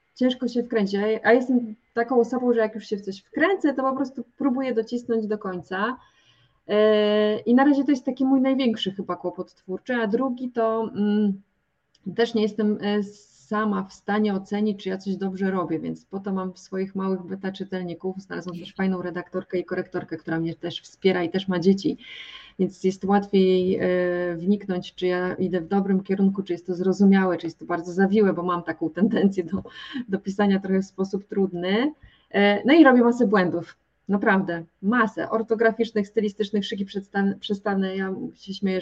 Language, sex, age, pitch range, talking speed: Polish, female, 20-39, 190-230 Hz, 180 wpm